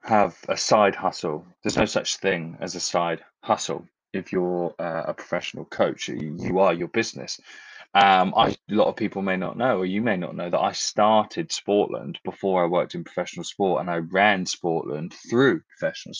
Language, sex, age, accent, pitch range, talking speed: English, male, 20-39, British, 95-125 Hz, 195 wpm